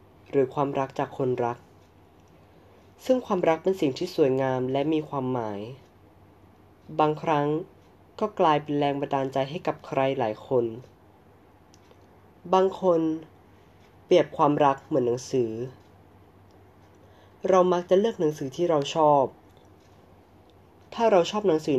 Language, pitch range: Thai, 100-155 Hz